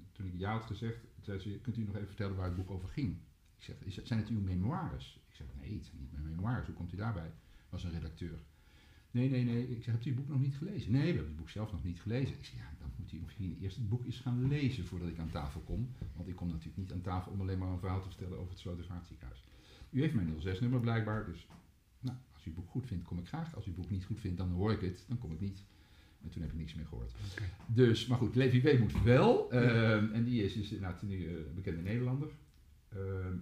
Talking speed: 270 wpm